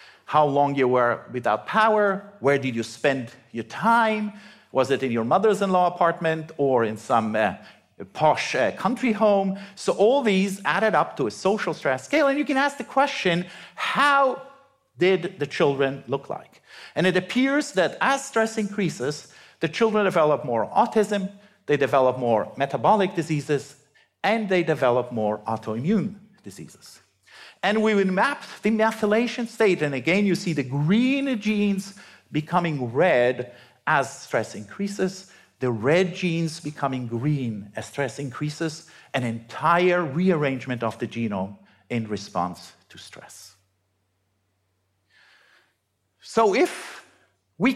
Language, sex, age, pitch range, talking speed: English, male, 50-69, 125-205 Hz, 140 wpm